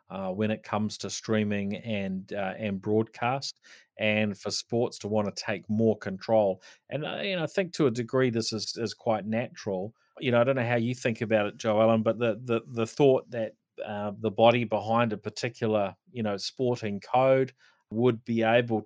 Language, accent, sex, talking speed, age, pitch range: English, Australian, male, 205 wpm, 30-49, 105-120 Hz